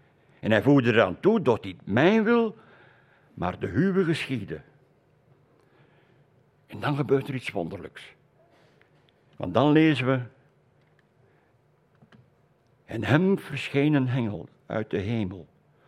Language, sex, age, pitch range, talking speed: Dutch, male, 60-79, 115-155 Hz, 120 wpm